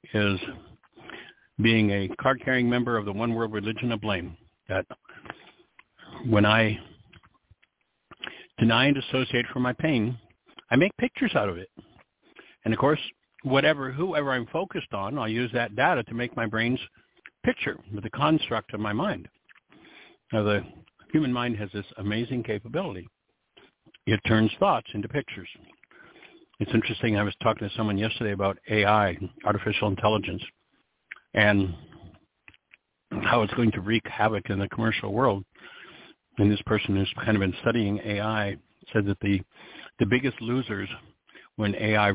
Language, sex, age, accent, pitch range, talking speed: English, male, 60-79, American, 105-120 Hz, 145 wpm